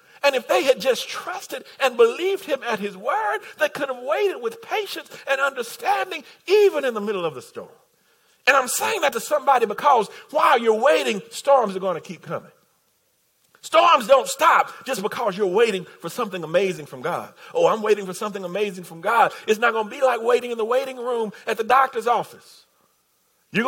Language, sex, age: English, male, 40-59